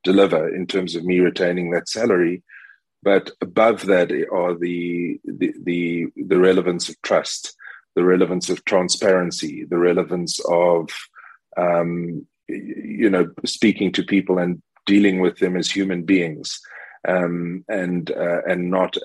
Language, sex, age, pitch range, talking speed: English, male, 30-49, 85-95 Hz, 140 wpm